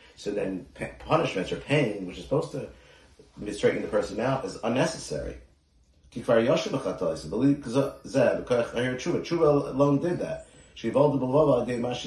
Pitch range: 70-120 Hz